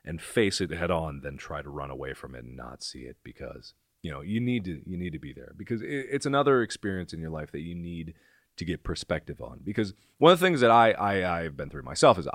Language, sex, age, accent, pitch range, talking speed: English, male, 30-49, American, 80-105 Hz, 260 wpm